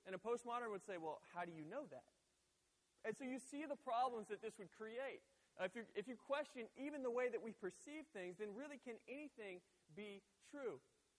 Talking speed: 210 wpm